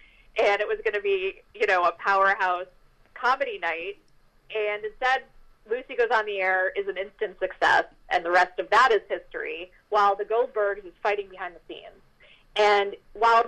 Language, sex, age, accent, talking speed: English, female, 30-49, American, 180 wpm